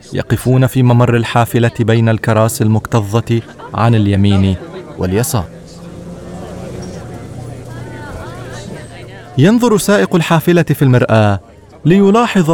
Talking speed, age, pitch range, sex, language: 75 wpm, 30-49, 110-140 Hz, male, Arabic